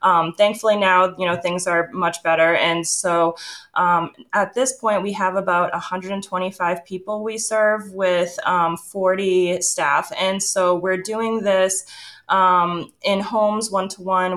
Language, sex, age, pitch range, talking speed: English, female, 20-39, 170-195 Hz, 145 wpm